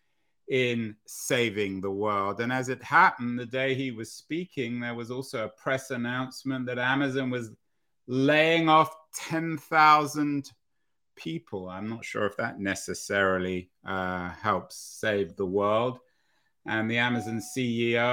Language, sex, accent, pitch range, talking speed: English, male, British, 105-135 Hz, 135 wpm